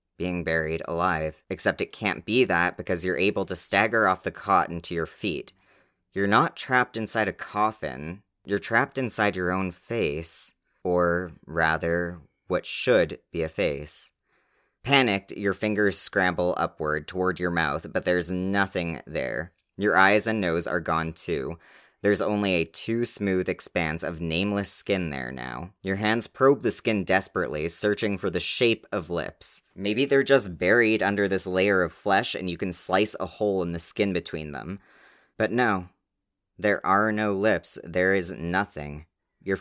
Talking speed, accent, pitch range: 165 wpm, American, 85-105 Hz